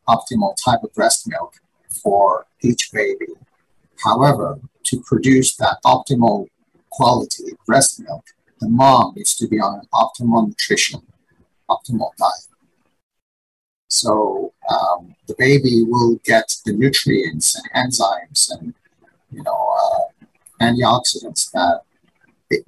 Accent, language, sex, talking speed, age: American, English, male, 115 wpm, 50-69